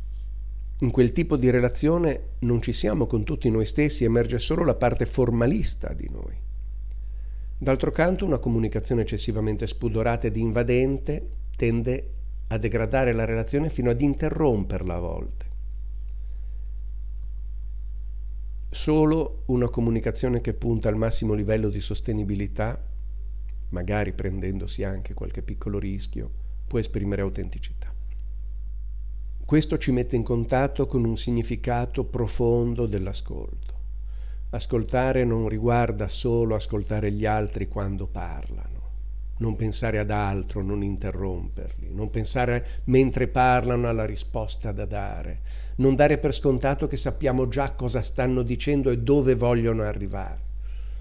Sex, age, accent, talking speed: male, 50-69, native, 120 wpm